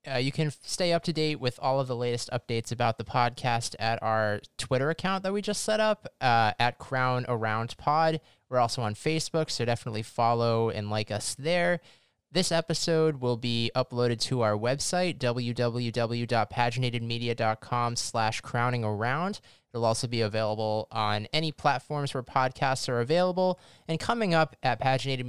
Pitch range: 115-150 Hz